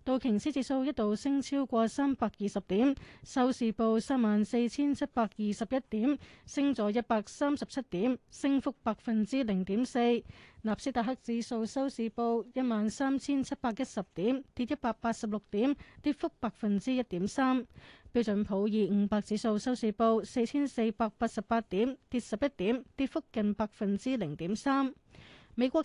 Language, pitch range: Chinese, 215-265 Hz